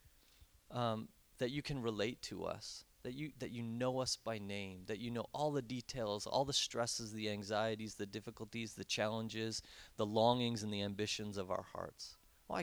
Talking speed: 185 wpm